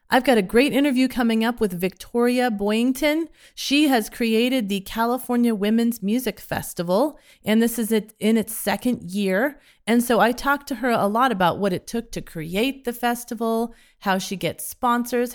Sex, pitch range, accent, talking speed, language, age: female, 195-245 Hz, American, 175 wpm, English, 30-49